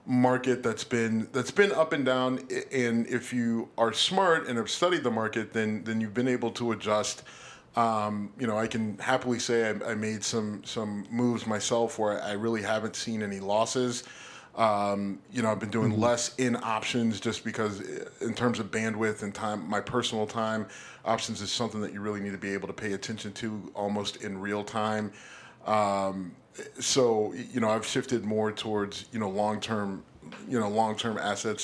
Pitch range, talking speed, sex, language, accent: 105-120 Hz, 190 wpm, male, English, American